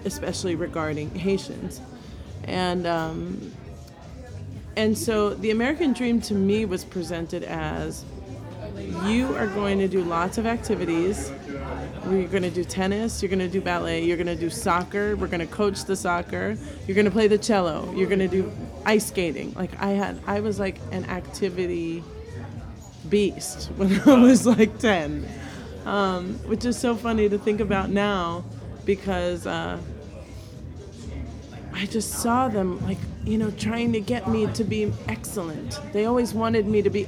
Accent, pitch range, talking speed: American, 165-215 Hz, 165 wpm